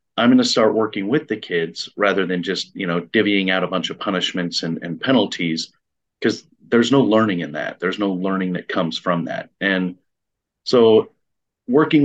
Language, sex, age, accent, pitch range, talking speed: English, male, 30-49, American, 95-115 Hz, 190 wpm